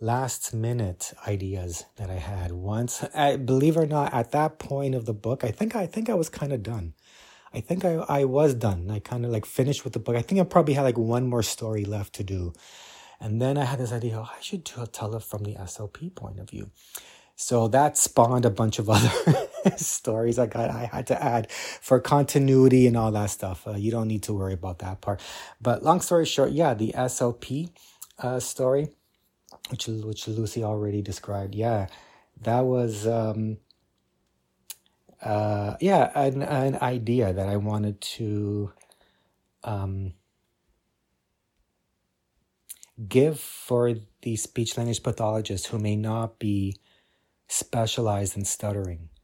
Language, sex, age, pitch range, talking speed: English, male, 30-49, 105-130 Hz, 165 wpm